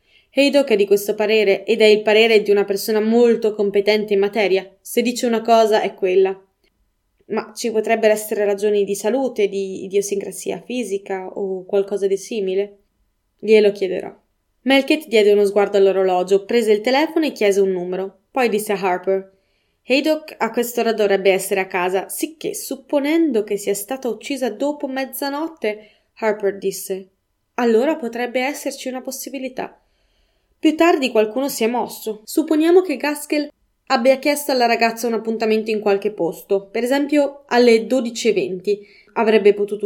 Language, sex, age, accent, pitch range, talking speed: Italian, female, 20-39, native, 200-255 Hz, 150 wpm